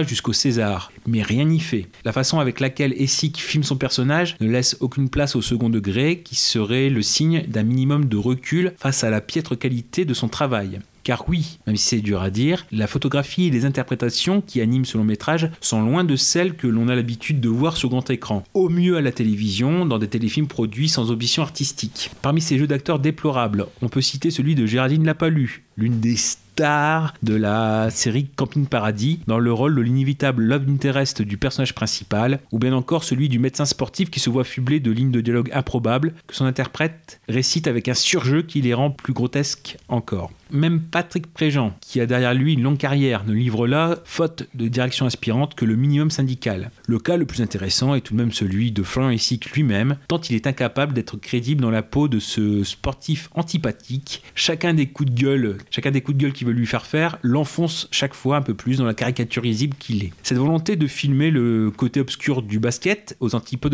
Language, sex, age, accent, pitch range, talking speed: French, male, 30-49, French, 120-145 Hz, 210 wpm